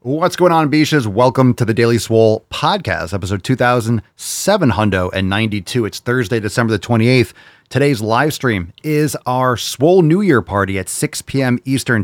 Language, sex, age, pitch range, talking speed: English, male, 30-49, 100-135 Hz, 150 wpm